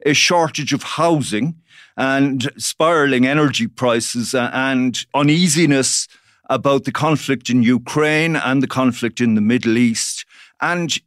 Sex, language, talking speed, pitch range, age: male, English, 125 wpm, 125-155 Hz, 50-69